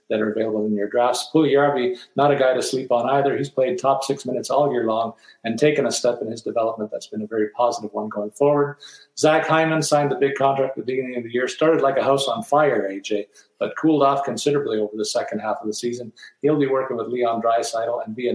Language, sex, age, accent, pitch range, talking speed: English, male, 50-69, American, 115-140 Hz, 250 wpm